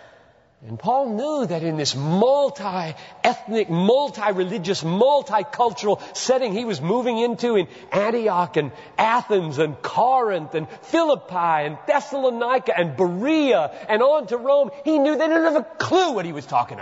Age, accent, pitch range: 50-69, American, 135-215 Hz